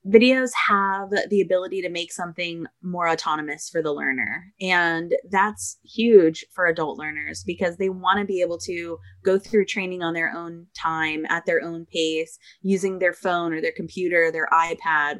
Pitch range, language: 160-190 Hz, English